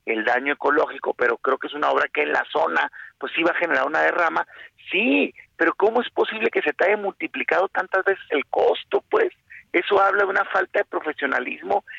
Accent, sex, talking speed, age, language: Mexican, male, 210 wpm, 50-69, Spanish